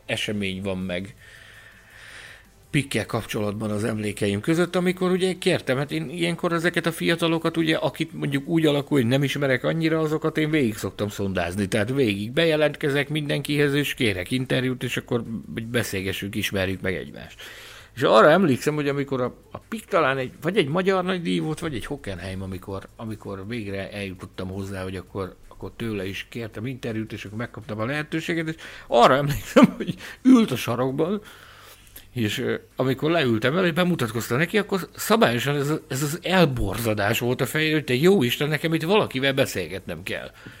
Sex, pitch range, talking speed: male, 105-155 Hz, 165 wpm